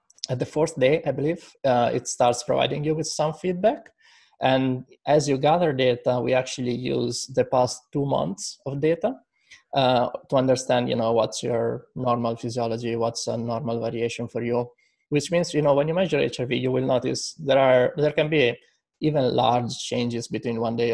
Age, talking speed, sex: 20-39, 185 wpm, male